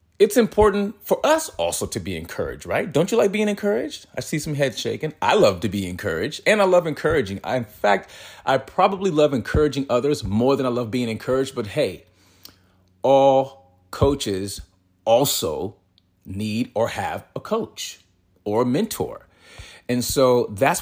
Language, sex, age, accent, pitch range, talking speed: English, male, 40-59, American, 100-145 Hz, 165 wpm